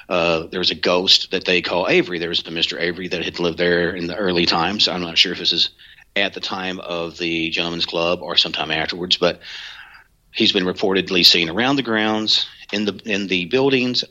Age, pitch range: 40-59, 85-100 Hz